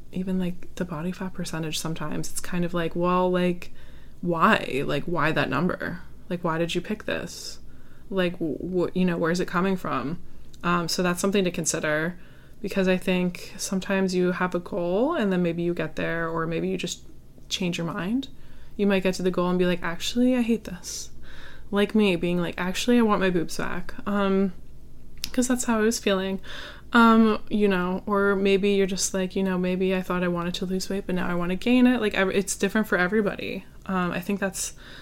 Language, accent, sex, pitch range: English, American, female, 170-195 Hz